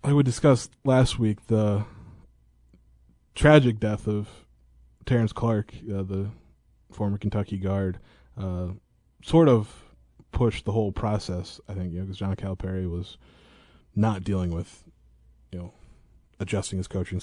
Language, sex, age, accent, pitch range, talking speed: English, male, 20-39, American, 90-115 Hz, 135 wpm